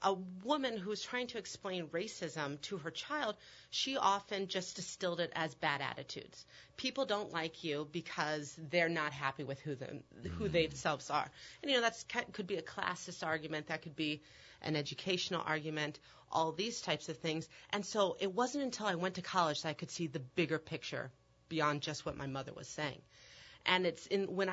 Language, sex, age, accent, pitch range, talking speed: English, female, 30-49, American, 150-190 Hz, 200 wpm